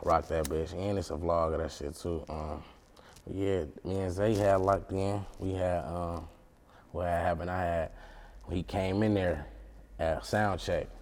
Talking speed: 185 wpm